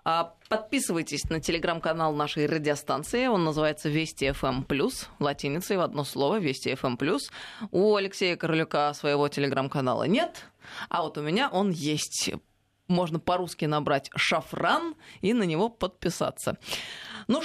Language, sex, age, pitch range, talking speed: Russian, female, 20-39, 140-180 Hz, 125 wpm